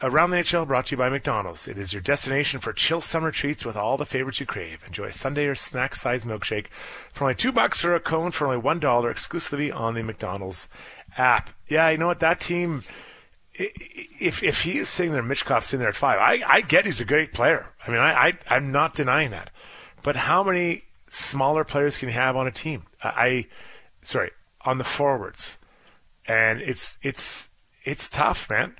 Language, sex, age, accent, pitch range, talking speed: English, male, 30-49, American, 110-145 Hz, 205 wpm